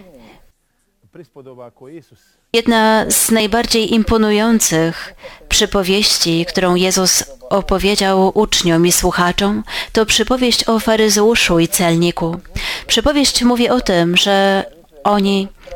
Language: Polish